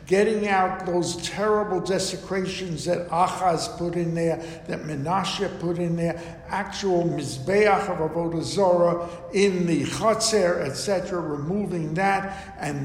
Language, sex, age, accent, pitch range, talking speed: English, male, 60-79, American, 160-195 Hz, 125 wpm